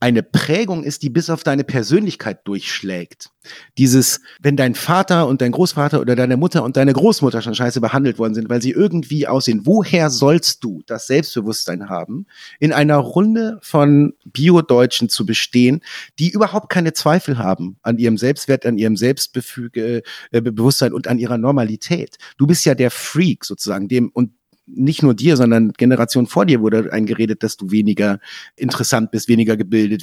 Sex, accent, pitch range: male, German, 110-145 Hz